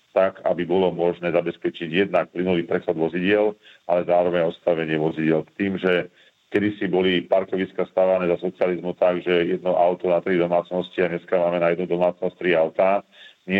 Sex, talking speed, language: male, 165 wpm, Slovak